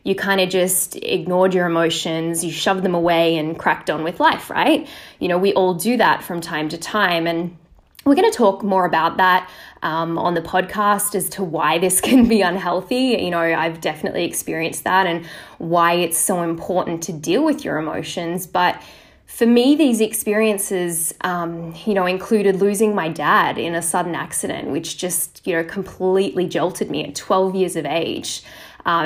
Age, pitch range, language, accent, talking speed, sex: 20-39, 170-195 Hz, English, Australian, 190 wpm, female